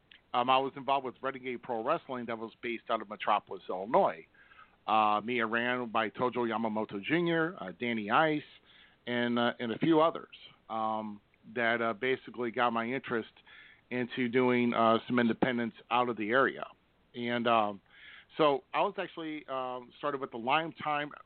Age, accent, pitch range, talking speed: 40-59, American, 120-150 Hz, 170 wpm